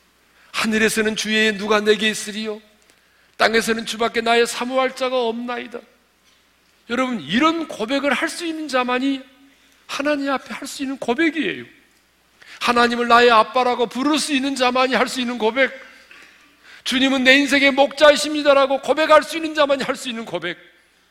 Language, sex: Korean, male